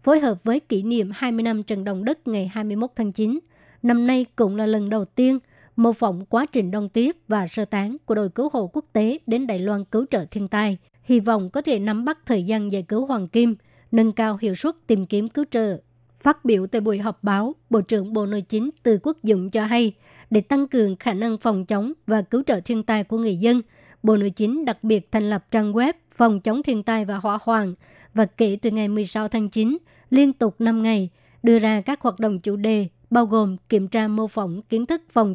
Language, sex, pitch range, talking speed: Vietnamese, male, 210-235 Hz, 235 wpm